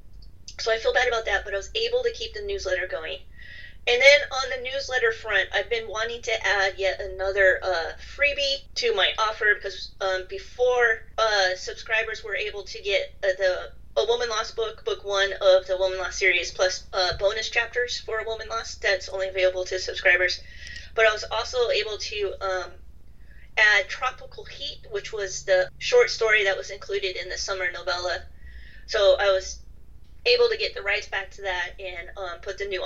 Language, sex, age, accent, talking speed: English, female, 30-49, American, 195 wpm